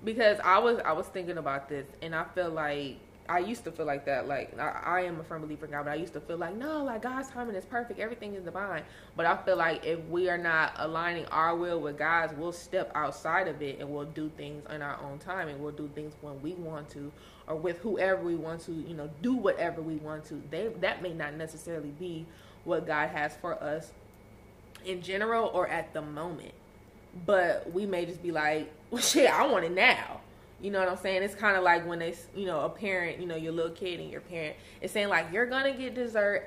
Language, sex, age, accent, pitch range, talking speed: English, female, 20-39, American, 155-185 Hz, 245 wpm